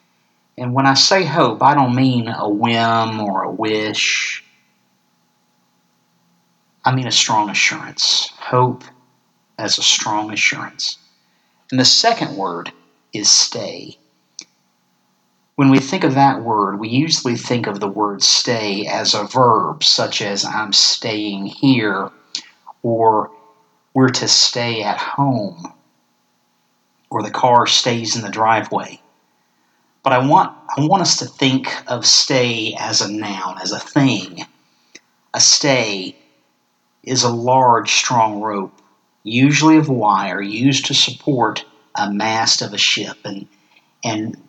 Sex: male